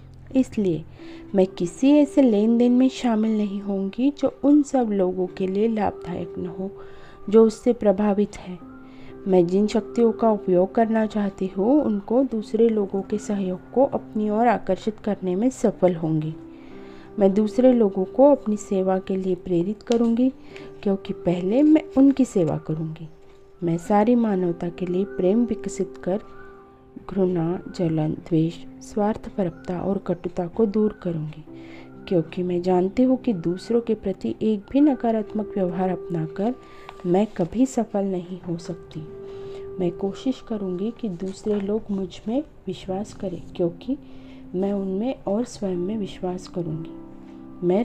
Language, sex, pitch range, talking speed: Hindi, female, 180-225 Hz, 145 wpm